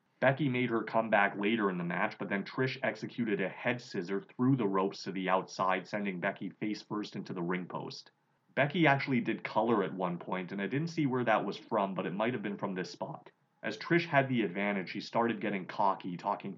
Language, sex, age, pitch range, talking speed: English, male, 30-49, 95-120 Hz, 220 wpm